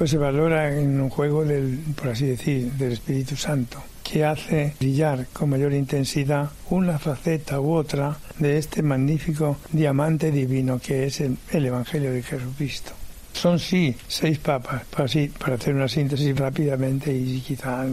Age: 60-79